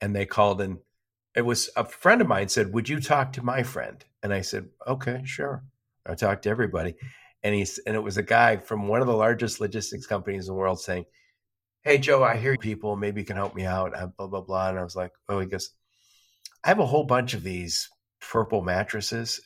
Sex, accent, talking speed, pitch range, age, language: male, American, 230 wpm, 95-135 Hz, 50-69, English